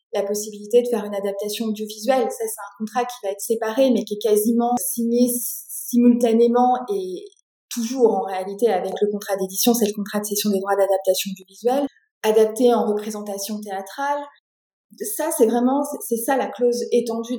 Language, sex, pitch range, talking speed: French, female, 215-255 Hz, 175 wpm